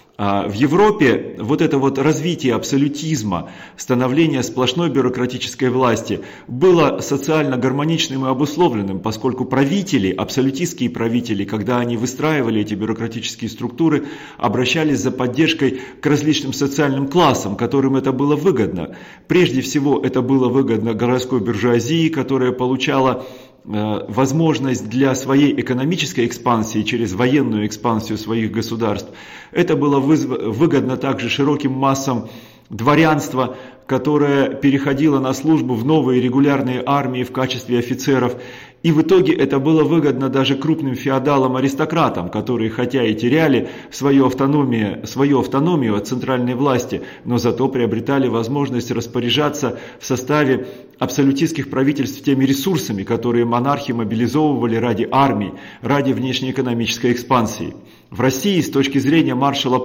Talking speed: 120 wpm